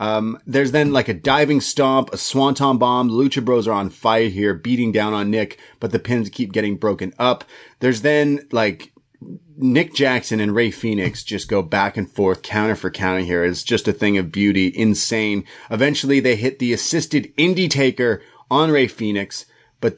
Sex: male